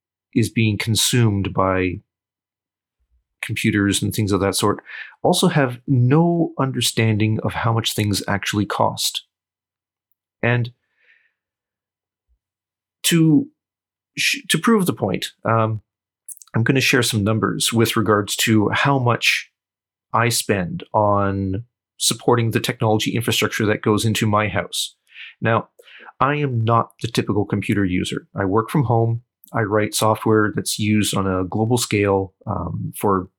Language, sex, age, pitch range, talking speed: English, male, 40-59, 100-125 Hz, 130 wpm